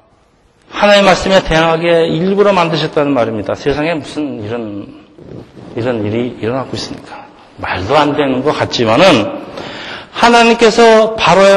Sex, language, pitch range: male, Korean, 160-215 Hz